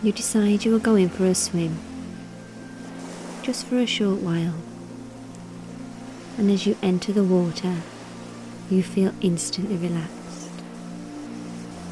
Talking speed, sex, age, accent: 115 wpm, female, 30-49, British